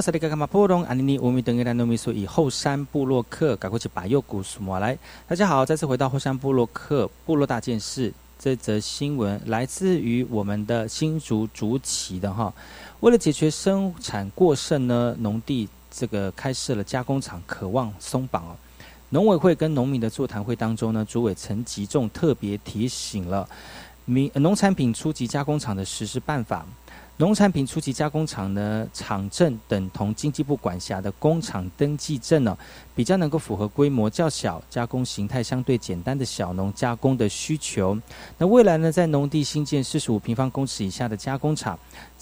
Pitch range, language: 110-150 Hz, Chinese